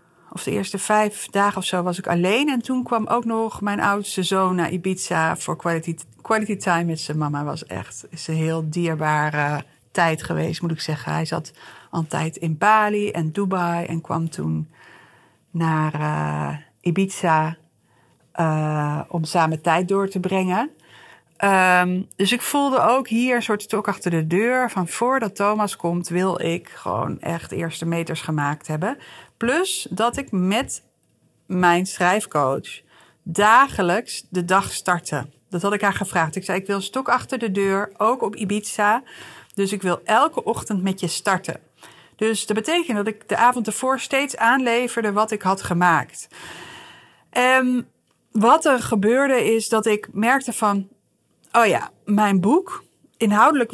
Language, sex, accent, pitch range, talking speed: Dutch, female, Dutch, 170-220 Hz, 160 wpm